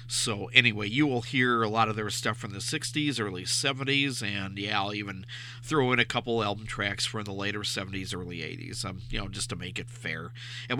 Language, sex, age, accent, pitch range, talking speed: English, male, 50-69, American, 100-125 Hz, 220 wpm